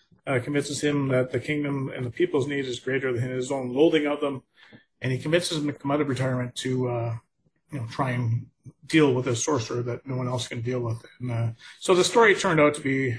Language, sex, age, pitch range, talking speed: English, male, 30-49, 125-155 Hz, 245 wpm